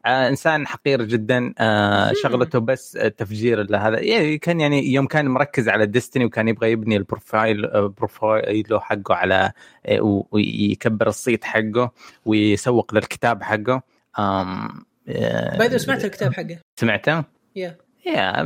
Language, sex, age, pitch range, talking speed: Arabic, male, 20-39, 105-135 Hz, 105 wpm